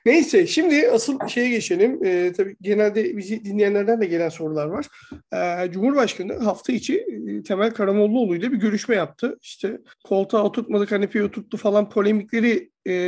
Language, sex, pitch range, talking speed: Turkish, male, 195-255 Hz, 140 wpm